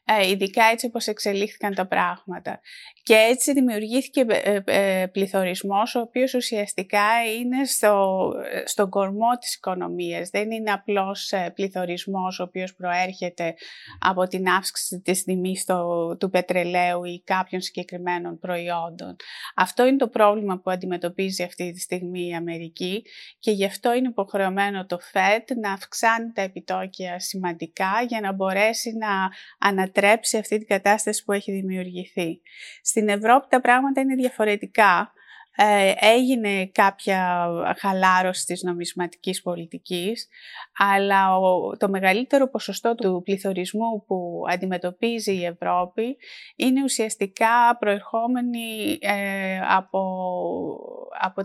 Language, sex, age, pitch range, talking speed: Greek, female, 30-49, 185-225 Hz, 115 wpm